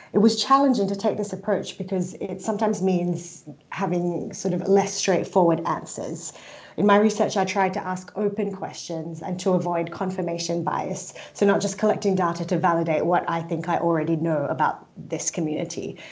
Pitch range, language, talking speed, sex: 170-200 Hz, English, 175 wpm, female